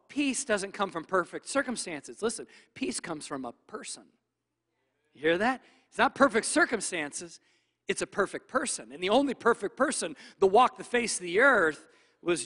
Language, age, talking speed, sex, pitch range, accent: English, 40-59, 175 wpm, male, 175-240 Hz, American